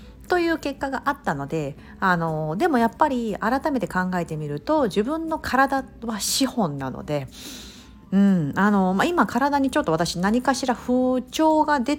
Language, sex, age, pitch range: Japanese, female, 50-69, 160-255 Hz